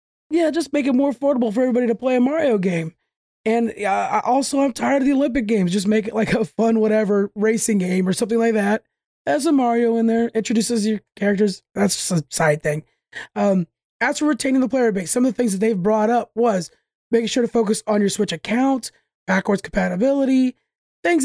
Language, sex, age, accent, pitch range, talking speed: English, male, 20-39, American, 210-255 Hz, 210 wpm